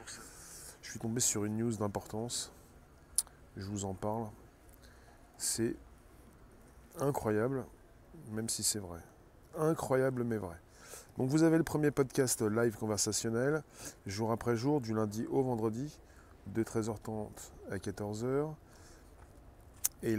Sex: male